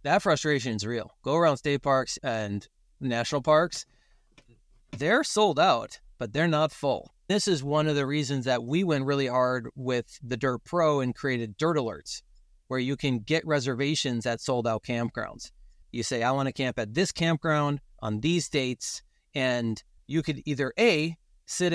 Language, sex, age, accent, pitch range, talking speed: English, male, 30-49, American, 125-155 Hz, 175 wpm